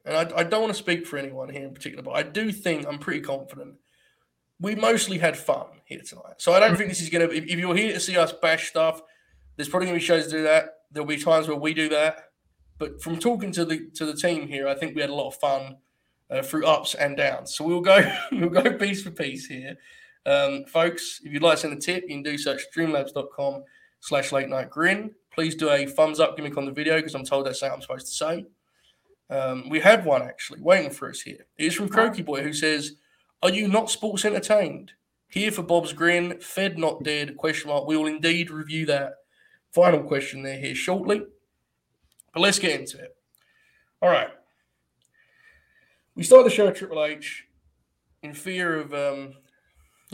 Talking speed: 220 wpm